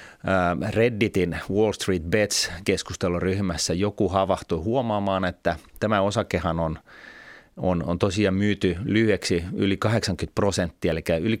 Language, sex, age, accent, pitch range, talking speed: Finnish, male, 30-49, native, 85-105 Hz, 110 wpm